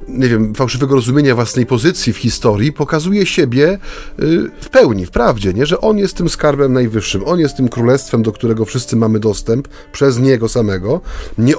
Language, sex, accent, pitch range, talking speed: Polish, male, native, 110-150 Hz, 175 wpm